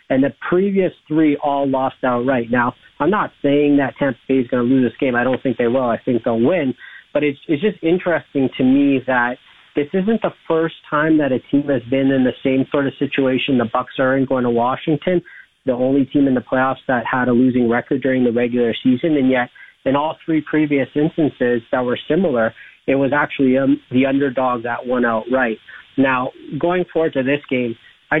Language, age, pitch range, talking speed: English, 40-59, 125-145 Hz, 215 wpm